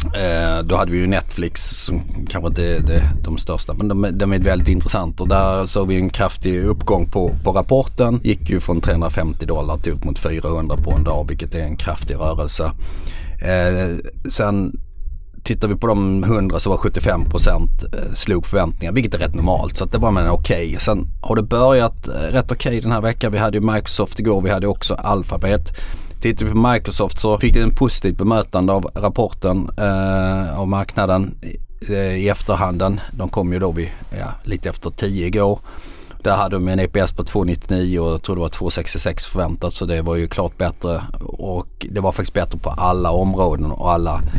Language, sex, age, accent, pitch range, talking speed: Swedish, male, 30-49, native, 80-100 Hz, 200 wpm